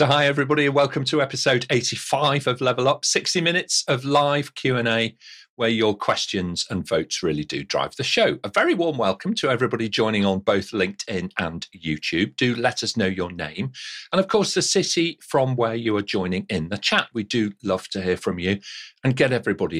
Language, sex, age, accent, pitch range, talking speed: English, male, 40-59, British, 100-140 Hz, 205 wpm